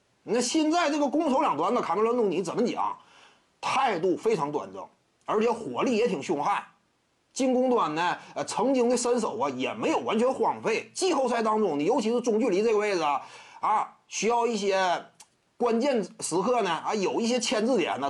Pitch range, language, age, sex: 195-280 Hz, Chinese, 30-49, male